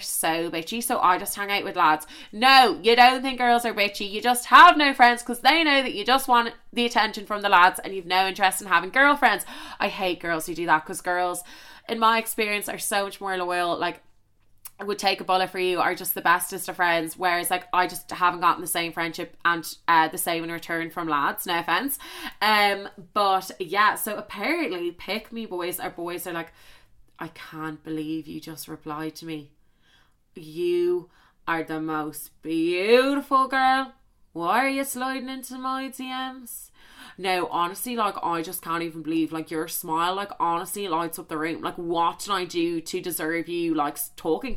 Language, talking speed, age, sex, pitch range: English, 200 wpm, 20-39, female, 170-235 Hz